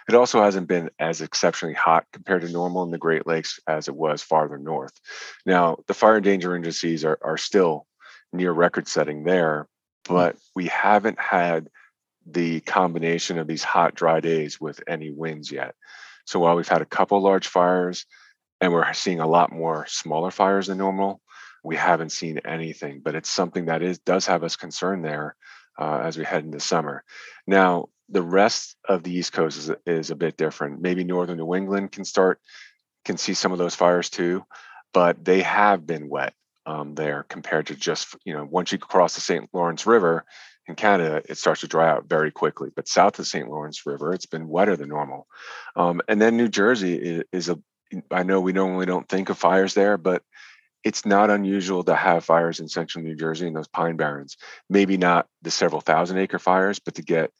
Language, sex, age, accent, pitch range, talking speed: English, male, 40-59, American, 80-95 Hz, 200 wpm